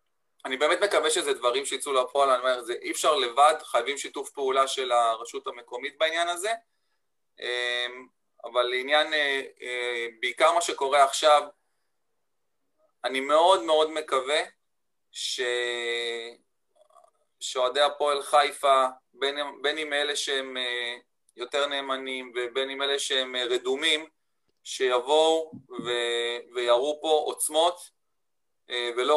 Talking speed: 105 wpm